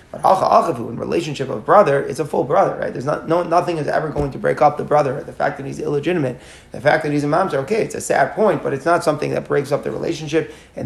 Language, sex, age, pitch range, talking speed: English, male, 30-49, 130-155 Hz, 260 wpm